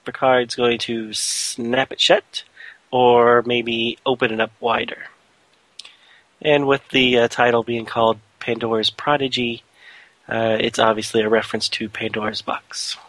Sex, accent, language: male, American, English